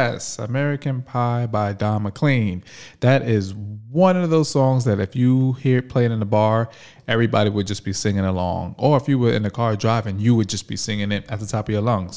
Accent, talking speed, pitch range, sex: American, 225 wpm, 105-130 Hz, male